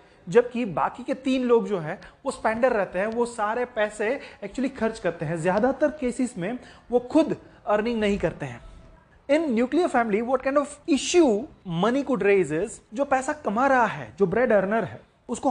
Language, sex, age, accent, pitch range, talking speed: Hindi, male, 30-49, native, 195-265 Hz, 180 wpm